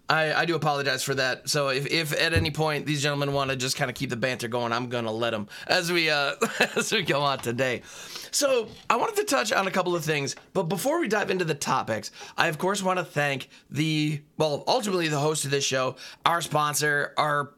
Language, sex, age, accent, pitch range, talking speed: English, male, 30-49, American, 135-160 Hz, 235 wpm